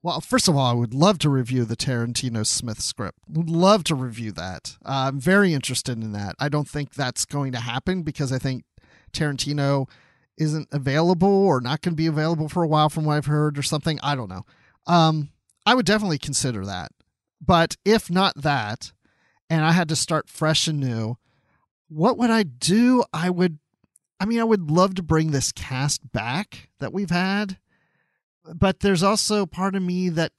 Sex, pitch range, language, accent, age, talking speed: male, 135-180 Hz, English, American, 40-59, 195 wpm